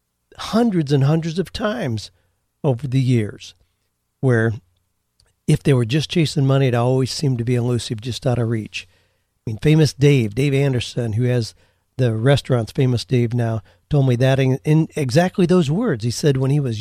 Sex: male